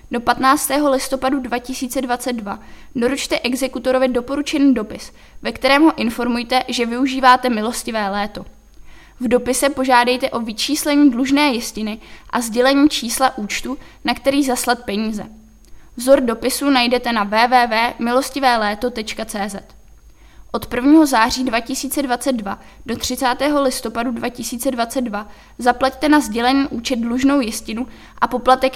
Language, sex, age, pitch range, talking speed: Czech, female, 20-39, 230-265 Hz, 110 wpm